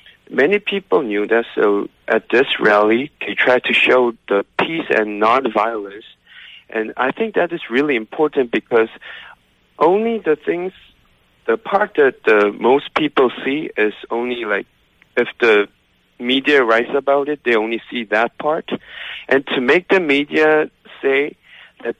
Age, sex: 50-69, male